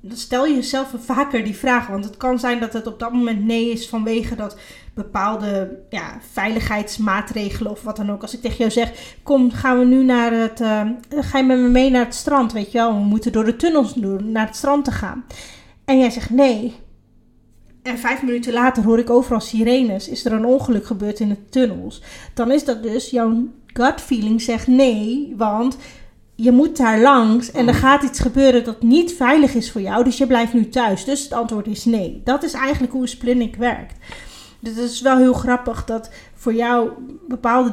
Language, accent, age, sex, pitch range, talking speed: Dutch, Dutch, 30-49, female, 220-255 Hz, 205 wpm